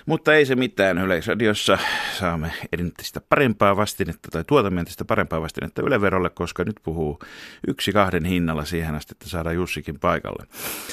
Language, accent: Finnish, native